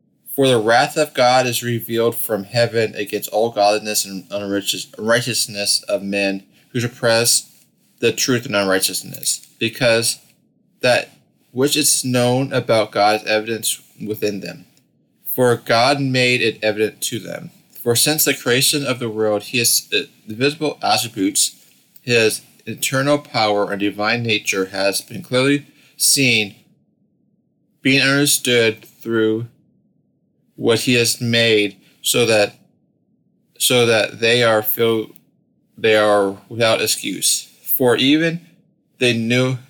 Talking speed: 120 wpm